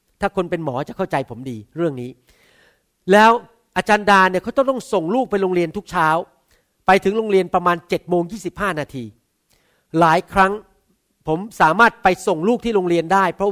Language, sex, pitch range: Thai, male, 150-200 Hz